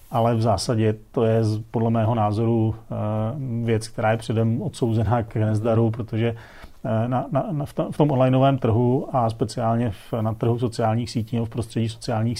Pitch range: 110-120 Hz